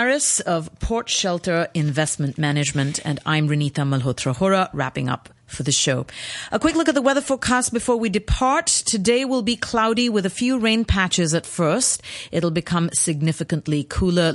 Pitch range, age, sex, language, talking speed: 145-185 Hz, 40-59, female, English, 165 wpm